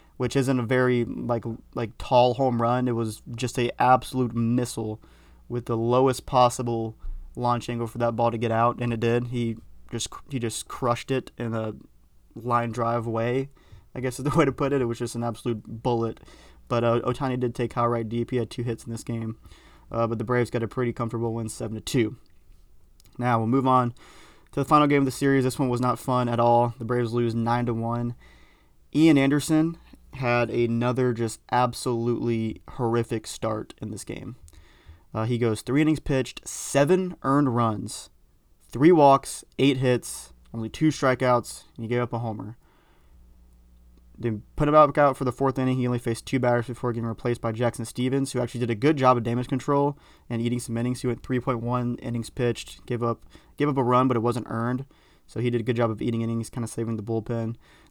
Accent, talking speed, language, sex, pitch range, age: American, 205 wpm, English, male, 115-125 Hz, 20-39